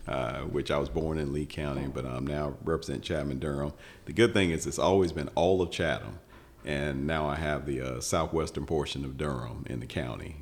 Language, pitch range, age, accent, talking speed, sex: English, 70-80 Hz, 40-59, American, 215 wpm, male